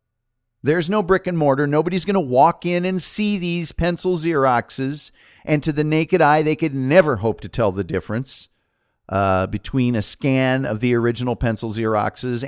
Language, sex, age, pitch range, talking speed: English, male, 50-69, 115-145 Hz, 180 wpm